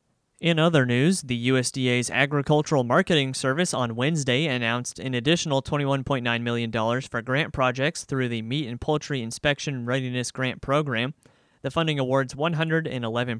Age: 30-49